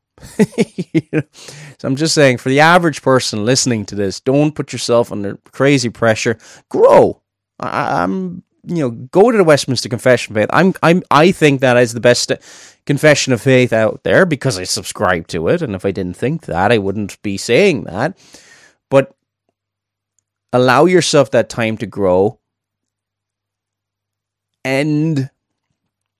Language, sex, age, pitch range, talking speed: English, male, 30-49, 110-150 Hz, 150 wpm